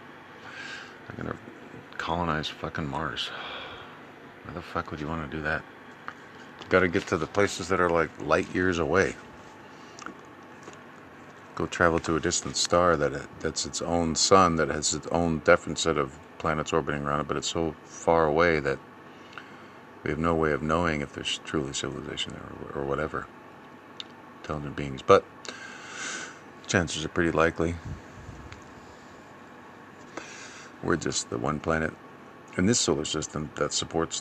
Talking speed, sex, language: 145 wpm, male, English